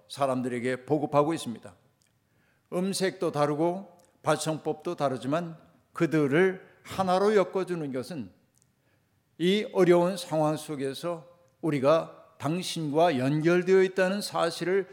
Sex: male